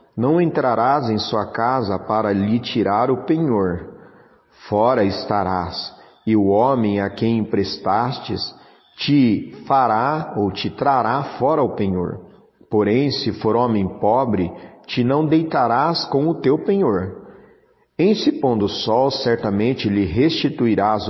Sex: male